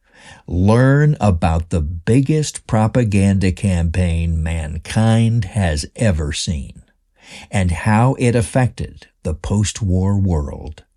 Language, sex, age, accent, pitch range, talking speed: English, male, 60-79, American, 85-115 Hz, 95 wpm